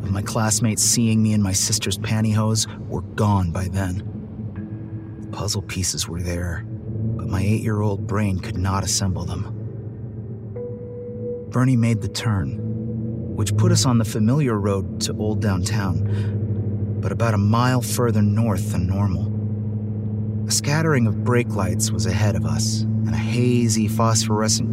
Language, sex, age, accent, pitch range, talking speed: English, male, 30-49, American, 105-115 Hz, 145 wpm